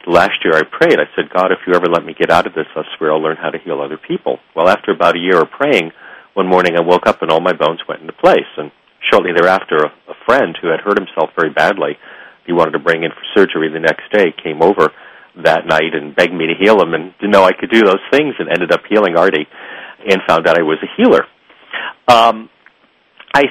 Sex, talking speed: male, 250 wpm